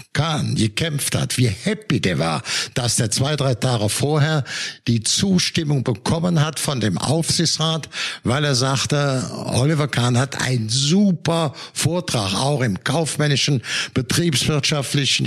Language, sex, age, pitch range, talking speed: German, male, 60-79, 130-160 Hz, 130 wpm